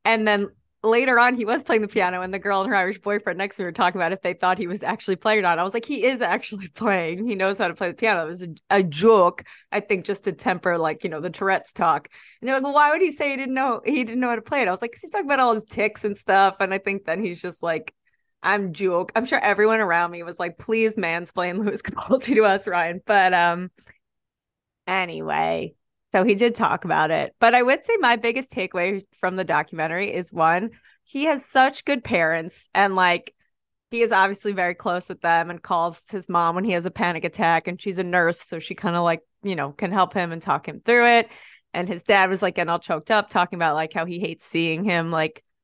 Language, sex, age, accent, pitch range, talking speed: English, female, 30-49, American, 175-220 Hz, 260 wpm